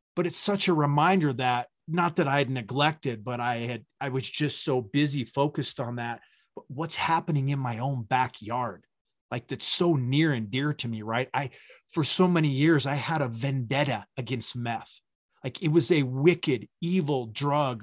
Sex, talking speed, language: male, 190 wpm, English